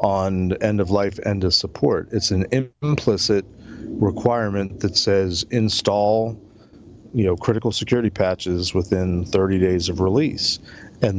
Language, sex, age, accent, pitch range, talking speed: English, male, 40-59, American, 95-110 Hz, 135 wpm